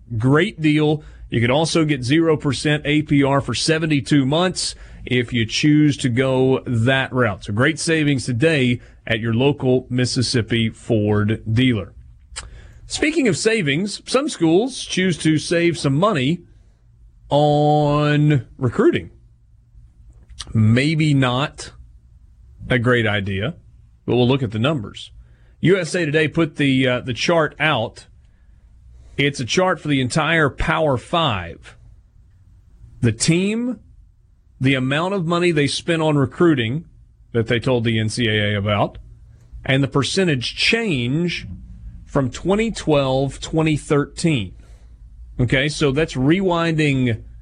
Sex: male